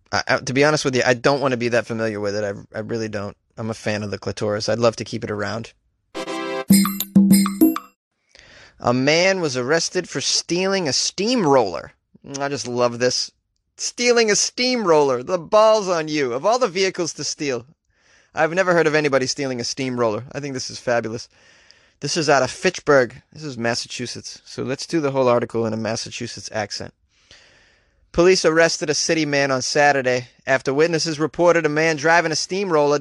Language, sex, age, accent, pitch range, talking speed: English, male, 20-39, American, 125-170 Hz, 185 wpm